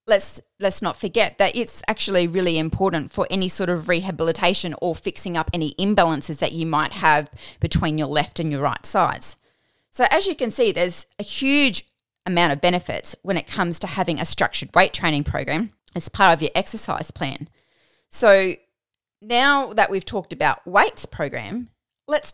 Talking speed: 175 wpm